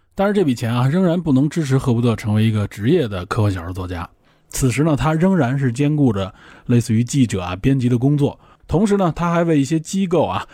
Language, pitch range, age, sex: Chinese, 110-150 Hz, 20-39, male